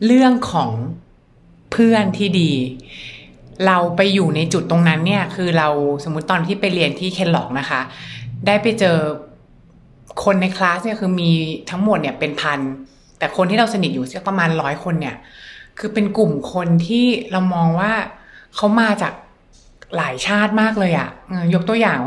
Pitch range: 170-210 Hz